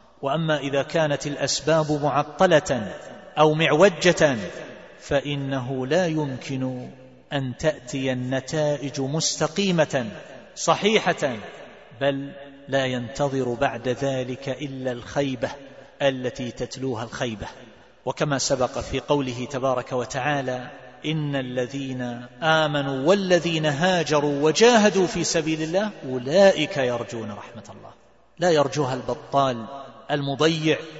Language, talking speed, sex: Arabic, 95 wpm, male